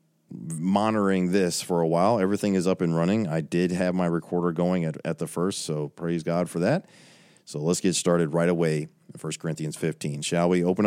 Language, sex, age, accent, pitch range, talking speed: English, male, 40-59, American, 90-135 Hz, 210 wpm